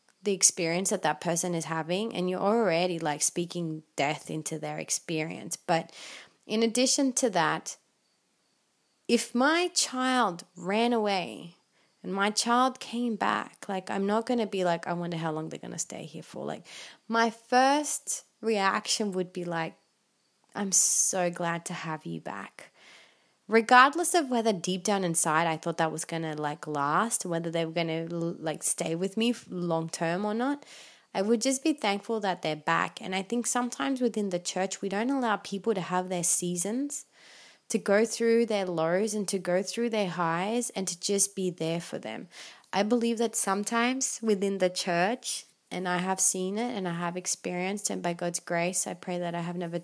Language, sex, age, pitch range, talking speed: English, female, 20-39, 175-225 Hz, 185 wpm